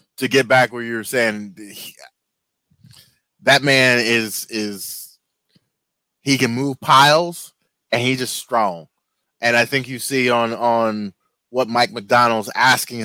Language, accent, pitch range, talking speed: English, American, 115-135 Hz, 135 wpm